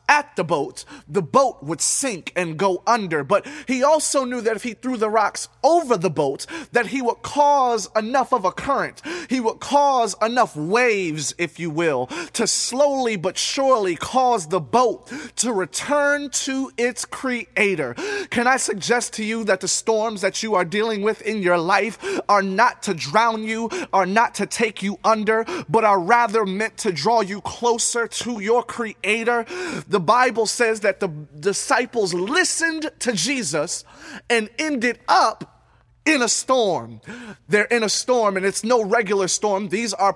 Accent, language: American, English